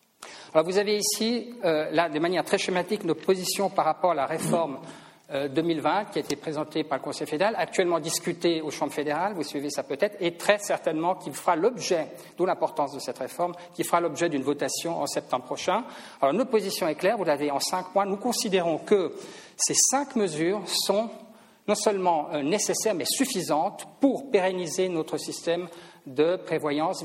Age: 50-69